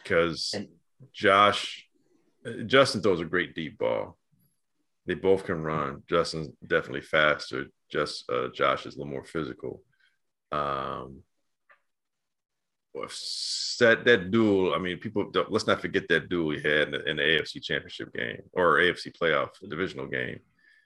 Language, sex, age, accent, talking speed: English, male, 40-59, American, 155 wpm